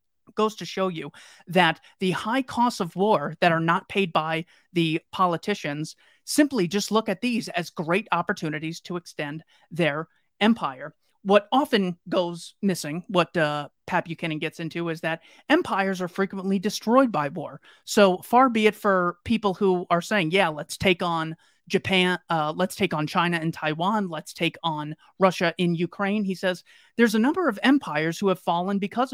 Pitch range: 160-195 Hz